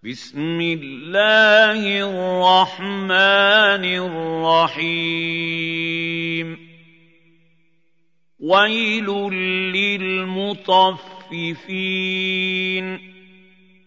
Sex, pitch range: male, 165-190 Hz